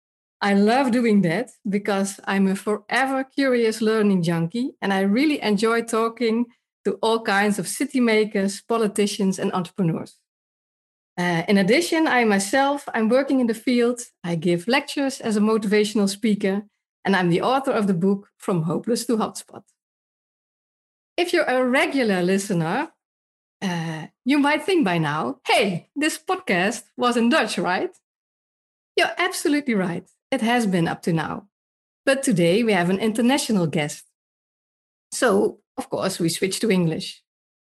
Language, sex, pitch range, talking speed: Dutch, female, 190-250 Hz, 150 wpm